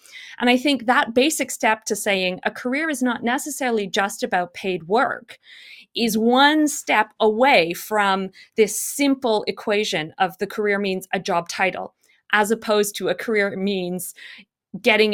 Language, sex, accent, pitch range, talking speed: English, female, American, 195-245 Hz, 155 wpm